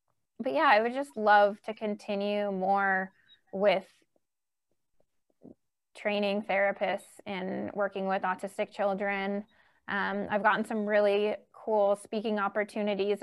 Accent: American